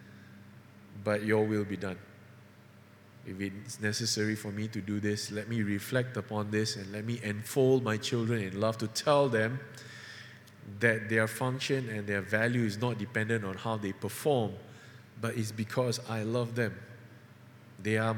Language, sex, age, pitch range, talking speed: English, male, 20-39, 105-125 Hz, 165 wpm